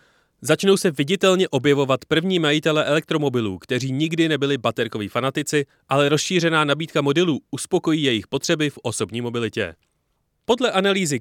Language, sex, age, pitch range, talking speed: Czech, male, 30-49, 120-165 Hz, 130 wpm